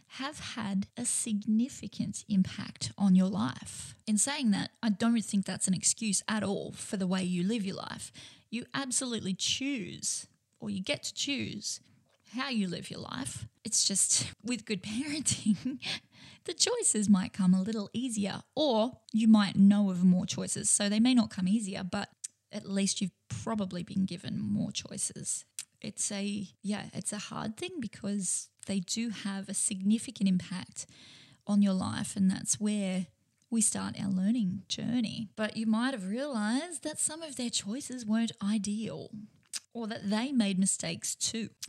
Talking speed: 165 wpm